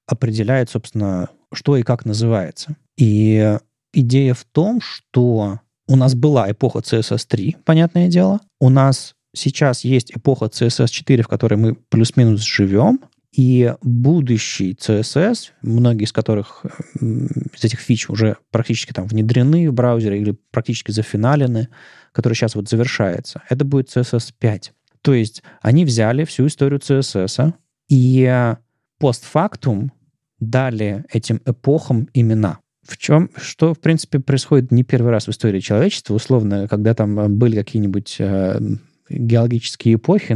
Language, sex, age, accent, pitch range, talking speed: Russian, male, 20-39, native, 110-140 Hz, 130 wpm